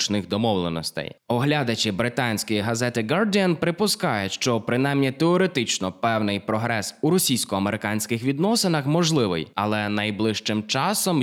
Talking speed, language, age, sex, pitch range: 95 wpm, Ukrainian, 20-39, male, 100-140 Hz